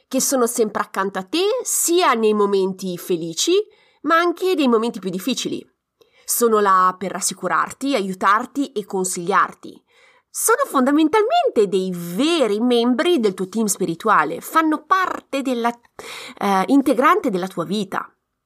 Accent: native